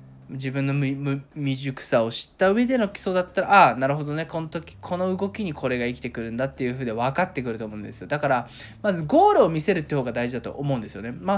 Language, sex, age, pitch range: Japanese, male, 20-39, 125-180 Hz